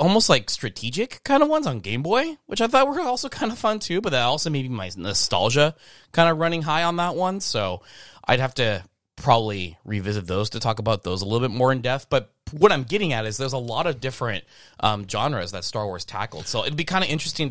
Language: English